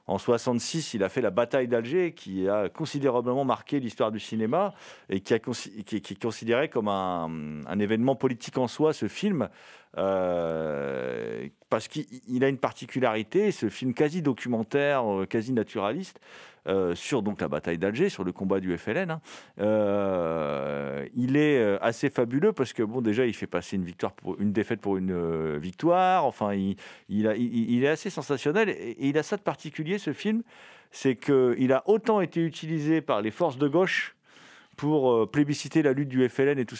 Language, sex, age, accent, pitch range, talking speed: French, male, 50-69, French, 100-145 Hz, 180 wpm